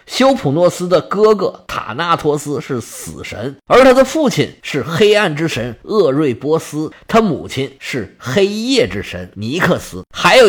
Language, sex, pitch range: Chinese, male, 125-190 Hz